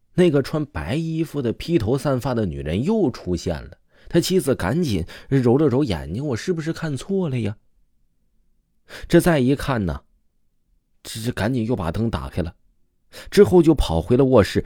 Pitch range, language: 85-140 Hz, Chinese